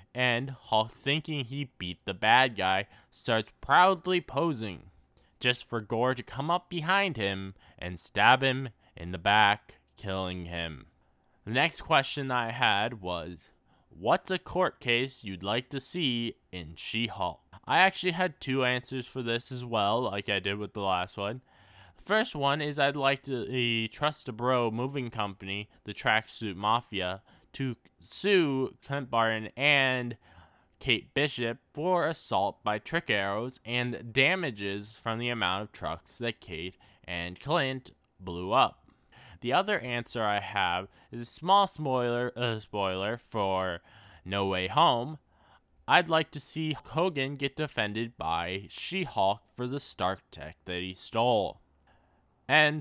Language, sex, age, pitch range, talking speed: English, male, 20-39, 95-140 Hz, 150 wpm